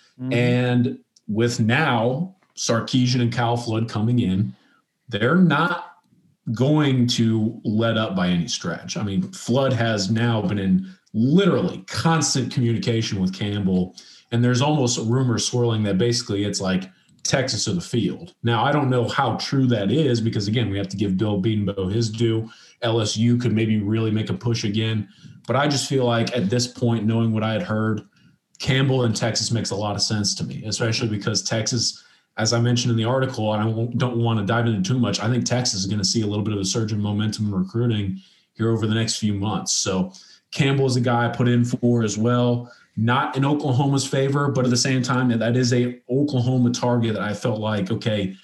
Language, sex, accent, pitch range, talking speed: English, male, American, 110-125 Hz, 200 wpm